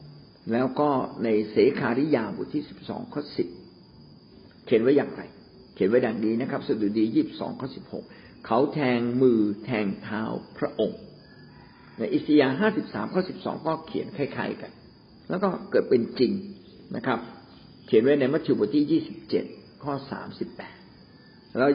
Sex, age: male, 60-79